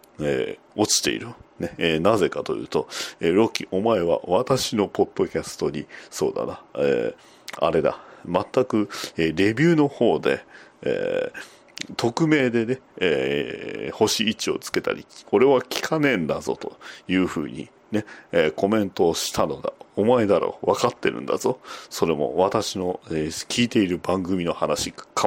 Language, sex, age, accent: Japanese, male, 40-59, native